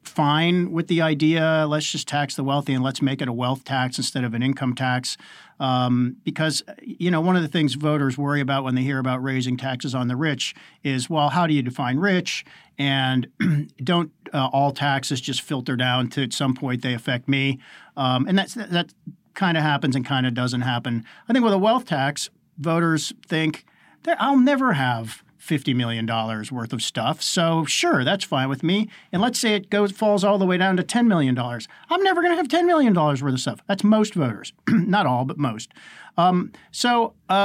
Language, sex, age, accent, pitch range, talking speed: English, male, 50-69, American, 135-185 Hz, 210 wpm